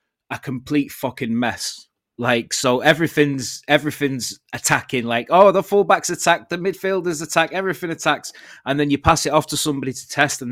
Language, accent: English, British